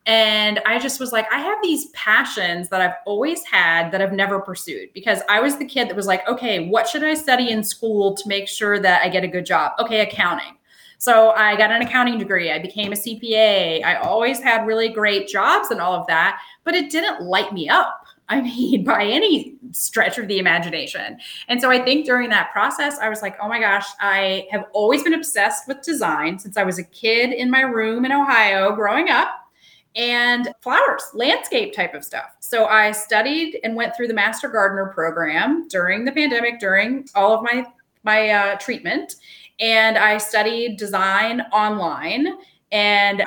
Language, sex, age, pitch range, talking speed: English, female, 30-49, 195-250 Hz, 195 wpm